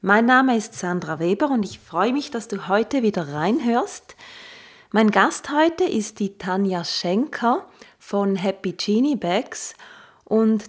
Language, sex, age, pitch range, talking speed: German, female, 30-49, 195-265 Hz, 145 wpm